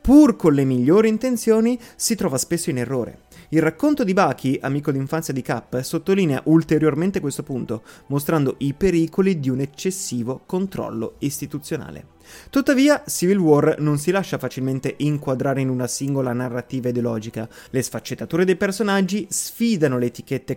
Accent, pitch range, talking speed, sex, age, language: native, 130-180 Hz, 145 wpm, male, 30-49, Italian